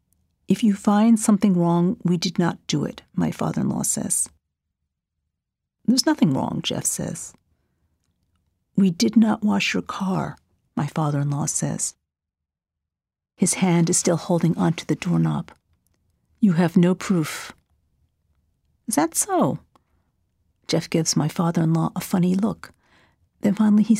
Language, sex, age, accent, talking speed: English, female, 50-69, American, 130 wpm